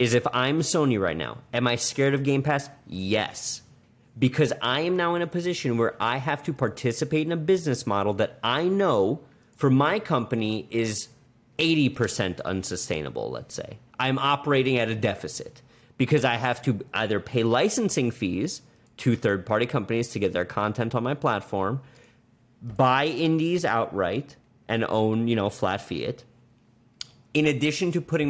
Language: English